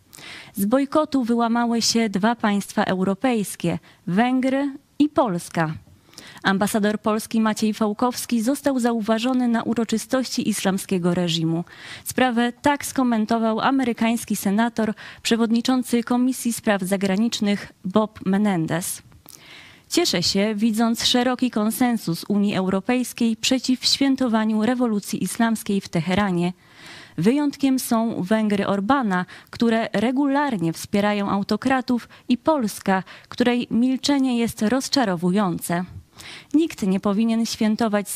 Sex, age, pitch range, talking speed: female, 20-39, 190-245 Hz, 100 wpm